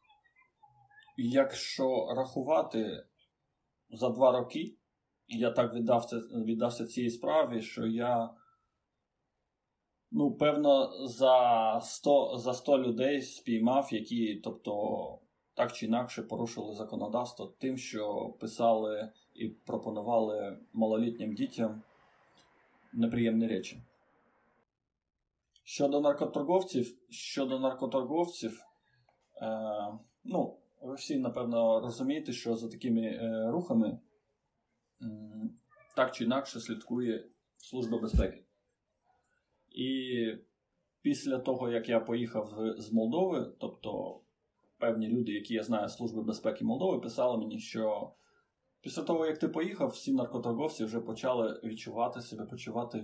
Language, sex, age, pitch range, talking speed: Ukrainian, male, 20-39, 110-135 Hz, 105 wpm